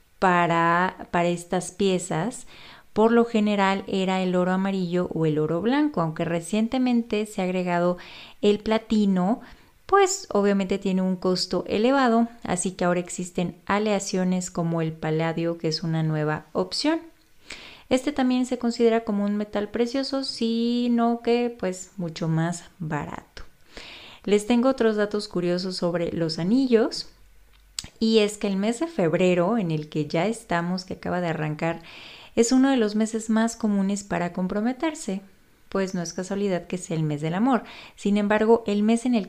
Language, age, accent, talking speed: Spanish, 30-49, Mexican, 160 wpm